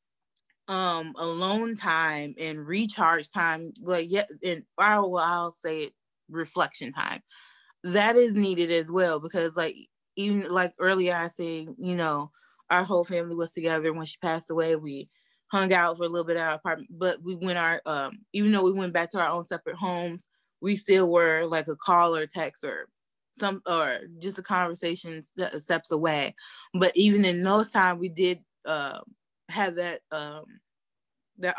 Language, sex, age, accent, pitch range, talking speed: English, female, 20-39, American, 165-195 Hz, 180 wpm